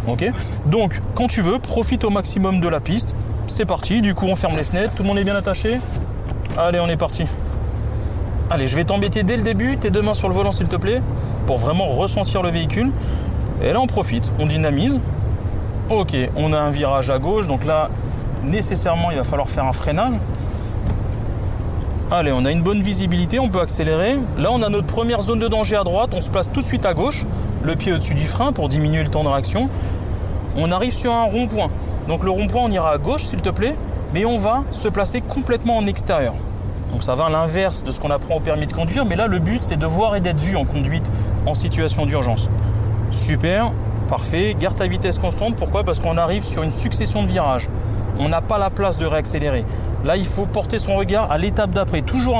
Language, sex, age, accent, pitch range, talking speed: French, male, 30-49, French, 100-130 Hz, 220 wpm